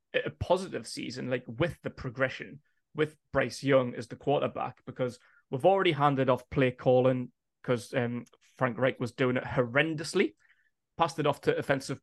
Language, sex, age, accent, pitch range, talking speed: English, male, 20-39, British, 130-155 Hz, 165 wpm